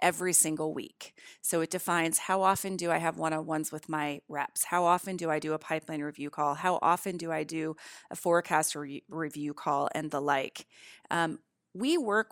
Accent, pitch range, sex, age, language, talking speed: American, 160-190 Hz, female, 30-49, English, 190 wpm